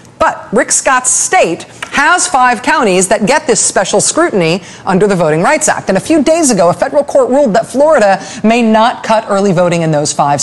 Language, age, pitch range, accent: English, 40-59, 165-250 Hz, American